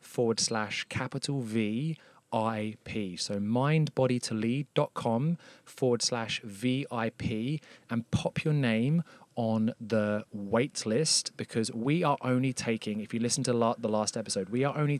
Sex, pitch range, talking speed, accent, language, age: male, 110-135 Hz, 130 wpm, British, English, 30-49